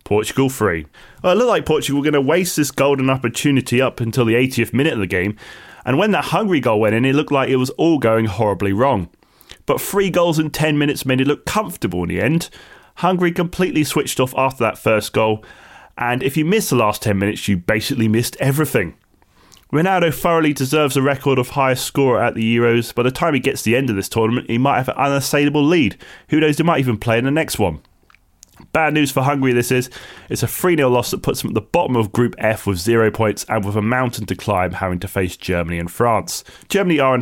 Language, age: English, 20-39